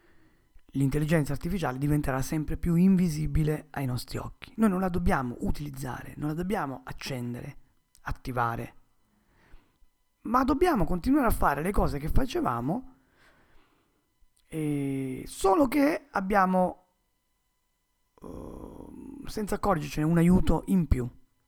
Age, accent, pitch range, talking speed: 30-49, native, 130-190 Hz, 110 wpm